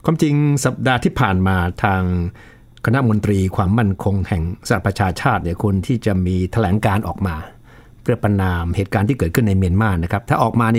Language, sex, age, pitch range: Thai, male, 60-79, 100-120 Hz